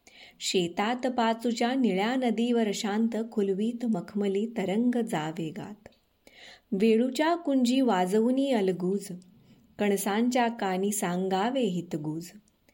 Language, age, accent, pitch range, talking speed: Marathi, 20-39, native, 195-240 Hz, 80 wpm